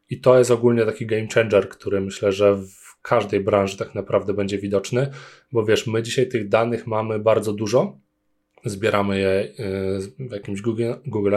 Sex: male